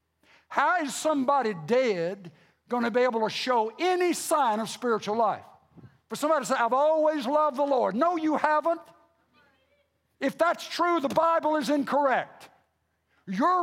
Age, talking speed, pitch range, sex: 60-79, 155 wpm, 205-290 Hz, male